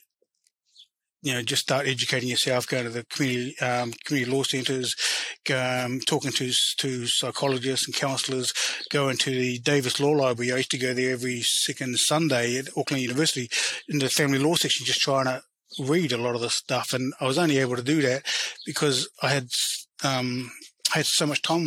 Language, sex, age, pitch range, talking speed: English, male, 30-49, 130-155 Hz, 195 wpm